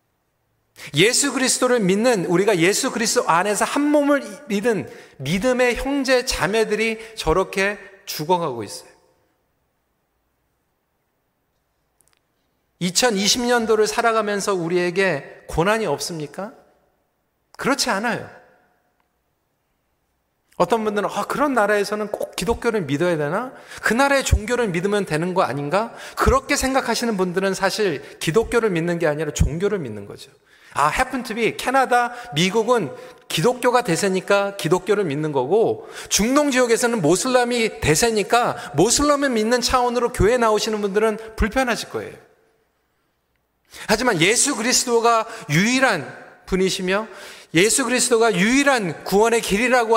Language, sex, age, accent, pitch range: Korean, male, 40-59, native, 180-245 Hz